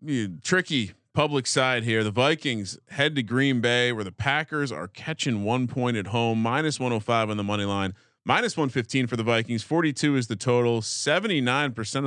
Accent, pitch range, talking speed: American, 110-140 Hz, 175 wpm